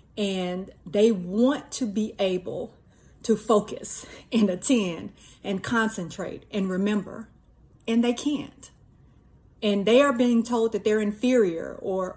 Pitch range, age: 185-220 Hz, 30-49